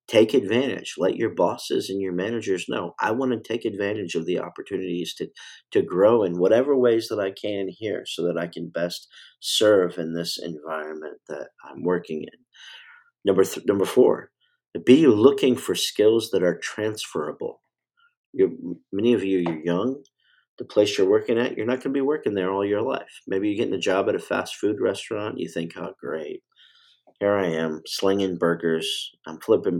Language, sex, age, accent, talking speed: English, male, 50-69, American, 185 wpm